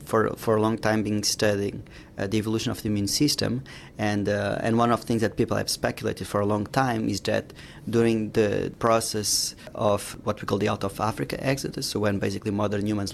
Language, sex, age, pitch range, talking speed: English, male, 30-49, 100-115 Hz, 220 wpm